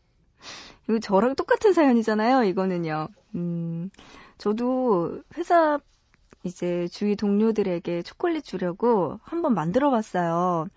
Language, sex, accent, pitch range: Korean, female, native, 200-285 Hz